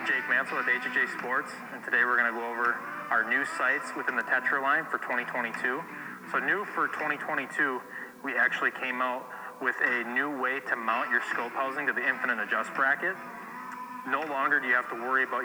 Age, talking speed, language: 20-39, 200 wpm, English